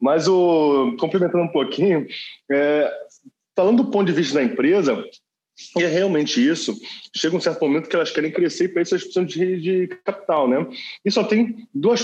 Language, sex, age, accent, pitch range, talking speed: Portuguese, male, 20-39, Brazilian, 130-205 Hz, 170 wpm